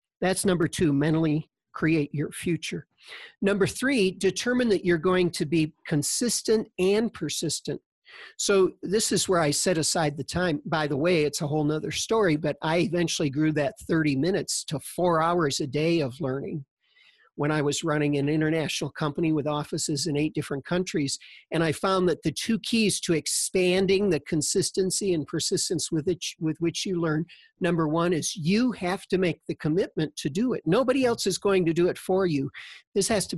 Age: 50-69